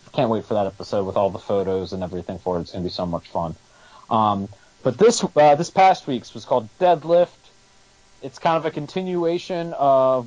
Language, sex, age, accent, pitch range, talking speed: English, male, 30-49, American, 115-150 Hz, 210 wpm